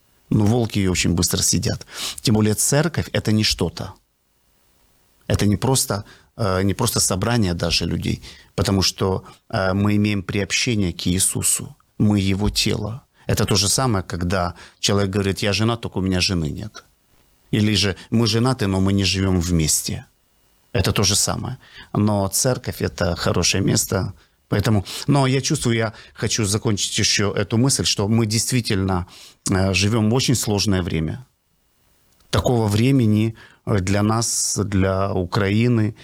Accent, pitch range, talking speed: native, 95-115 Hz, 145 wpm